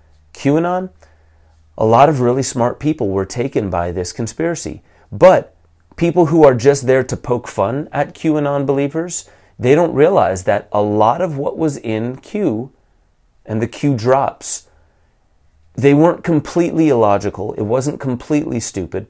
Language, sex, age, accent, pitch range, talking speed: English, male, 30-49, American, 105-145 Hz, 150 wpm